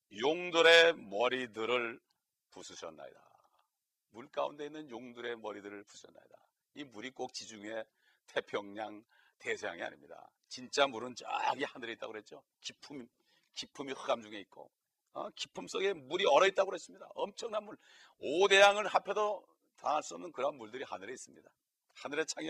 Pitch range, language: 125-190 Hz, Korean